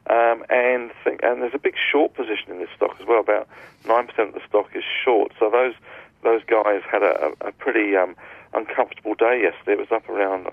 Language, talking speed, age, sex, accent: English, 210 wpm, 40-59, male, British